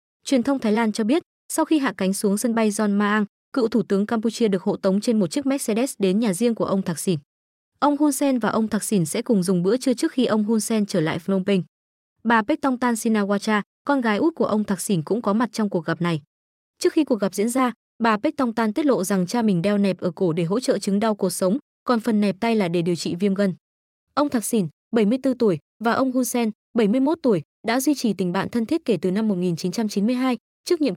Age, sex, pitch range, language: 20-39, female, 195-245 Hz, Vietnamese